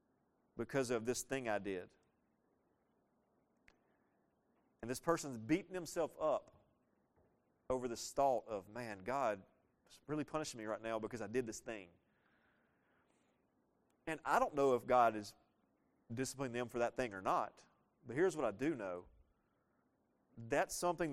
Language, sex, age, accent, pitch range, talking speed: English, male, 40-59, American, 120-165 Hz, 145 wpm